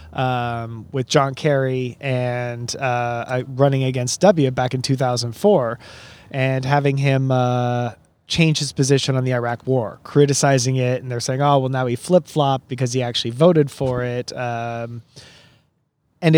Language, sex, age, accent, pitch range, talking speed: English, male, 20-39, American, 125-155 Hz, 155 wpm